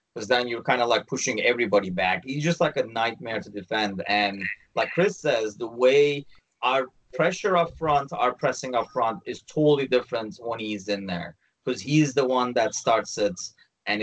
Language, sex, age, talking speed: English, male, 30-49, 195 wpm